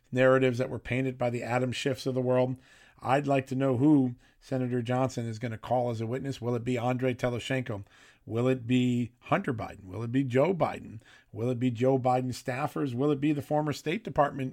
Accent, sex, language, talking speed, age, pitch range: American, male, English, 220 wpm, 50-69, 120-135 Hz